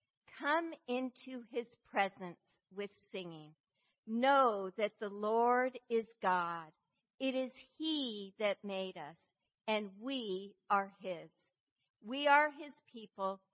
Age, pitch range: 50-69, 185-245 Hz